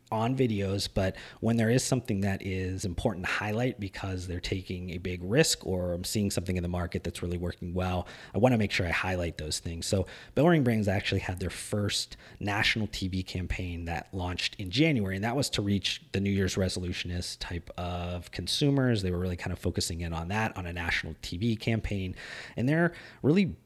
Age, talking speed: 30-49, 205 wpm